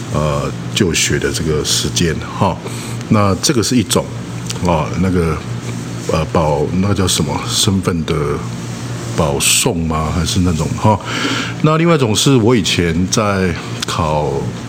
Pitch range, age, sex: 75-100 Hz, 50-69, male